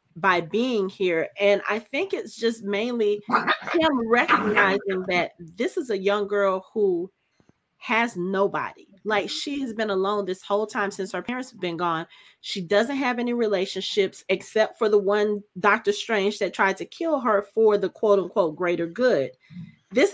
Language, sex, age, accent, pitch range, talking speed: English, female, 30-49, American, 195-255 Hz, 170 wpm